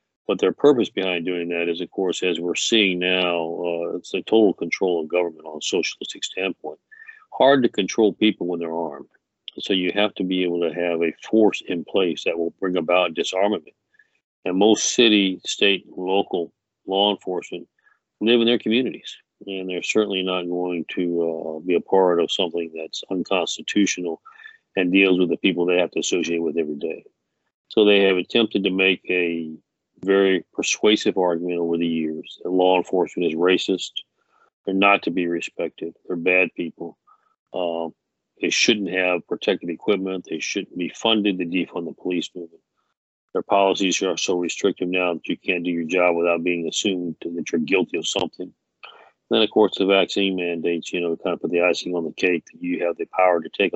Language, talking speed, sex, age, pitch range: English, 190 wpm, male, 50-69, 85-100 Hz